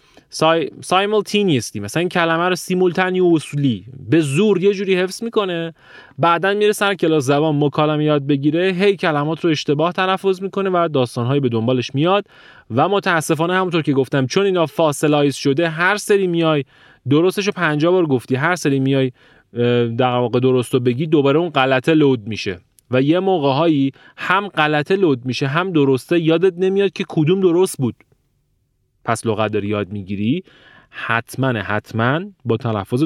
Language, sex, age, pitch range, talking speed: Persian, male, 30-49, 125-170 Hz, 160 wpm